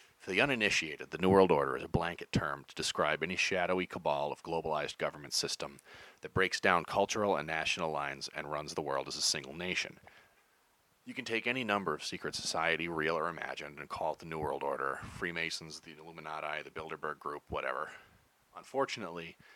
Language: English